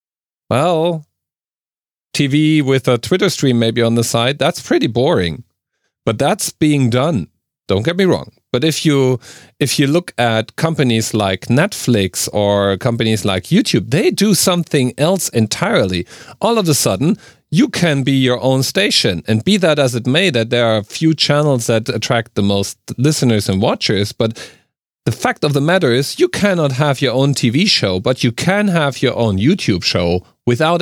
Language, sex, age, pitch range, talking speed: English, male, 40-59, 115-155 Hz, 180 wpm